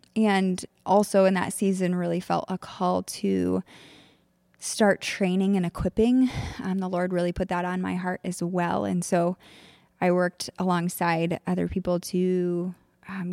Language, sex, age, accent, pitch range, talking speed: English, female, 20-39, American, 175-200 Hz, 155 wpm